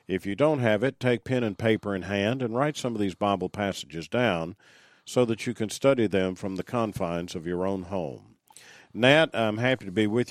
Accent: American